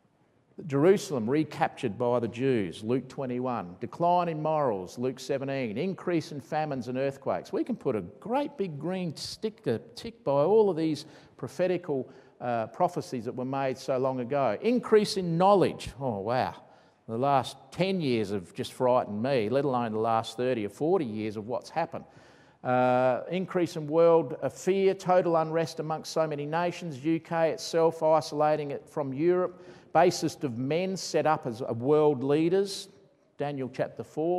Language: English